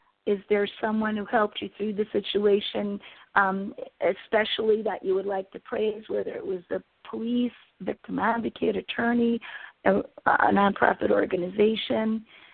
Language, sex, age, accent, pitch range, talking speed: English, female, 40-59, American, 205-245 Hz, 140 wpm